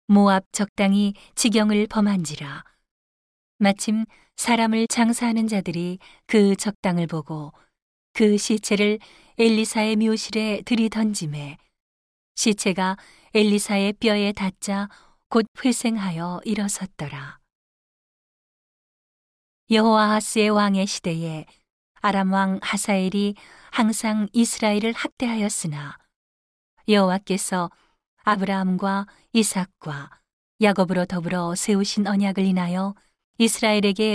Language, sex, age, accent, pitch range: Korean, female, 40-59, native, 180-215 Hz